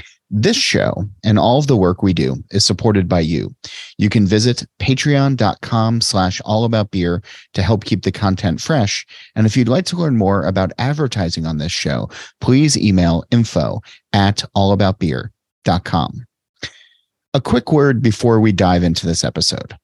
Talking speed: 155 wpm